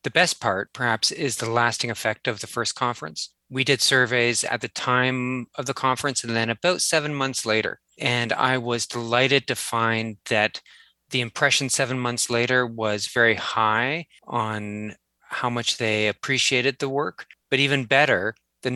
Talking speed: 170 wpm